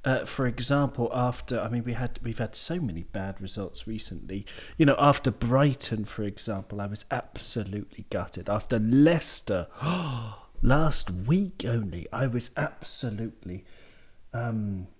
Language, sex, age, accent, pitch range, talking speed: English, male, 40-59, British, 110-155 Hz, 140 wpm